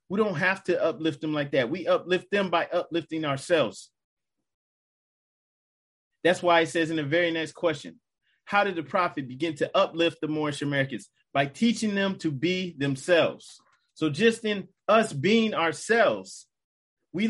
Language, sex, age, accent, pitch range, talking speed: English, male, 30-49, American, 165-225 Hz, 160 wpm